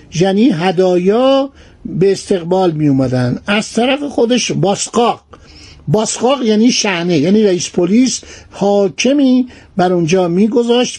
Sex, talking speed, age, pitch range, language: male, 110 wpm, 60-79, 170-220 Hz, Persian